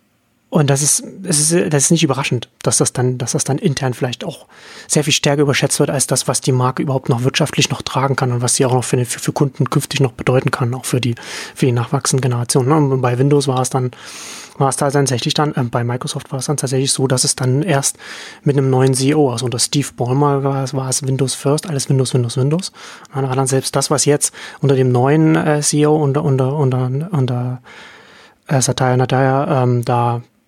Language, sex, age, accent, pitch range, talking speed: German, male, 30-49, German, 130-150 Hz, 215 wpm